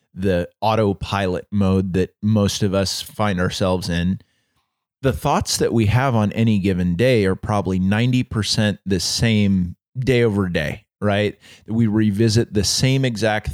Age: 30-49